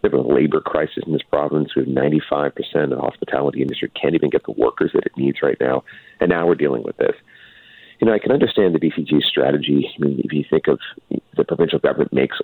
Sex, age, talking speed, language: male, 40-59, 230 wpm, English